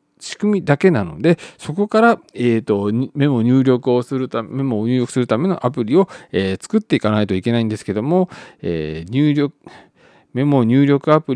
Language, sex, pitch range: Japanese, male, 105-160 Hz